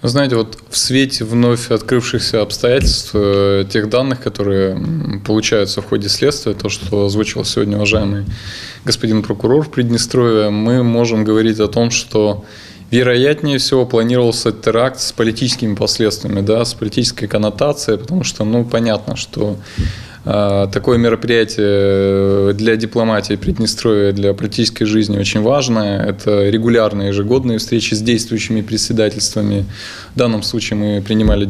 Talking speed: 130 wpm